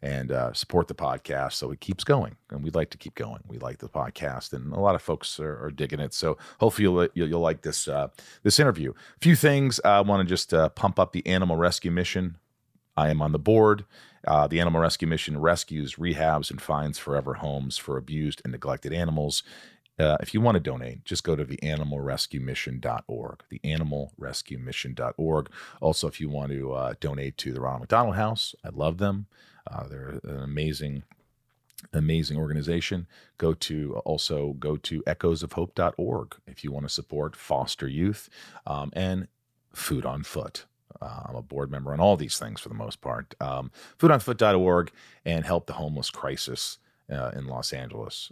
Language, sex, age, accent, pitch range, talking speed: English, male, 40-59, American, 70-90 Hz, 185 wpm